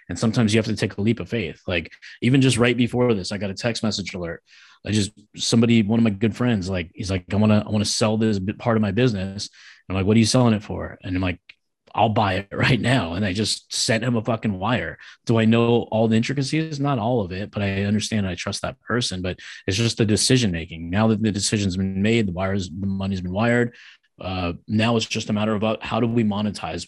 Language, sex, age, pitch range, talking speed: English, male, 20-39, 95-115 Hz, 255 wpm